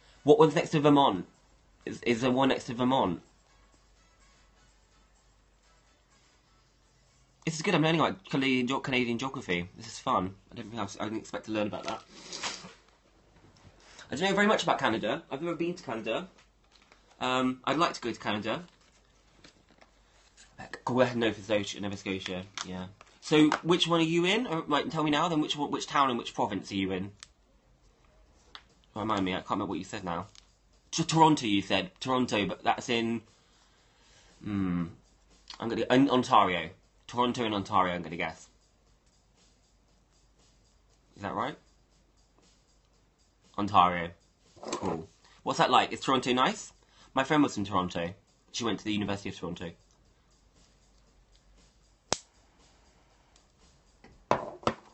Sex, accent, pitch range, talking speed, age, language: male, British, 95-135 Hz, 140 wpm, 20-39, English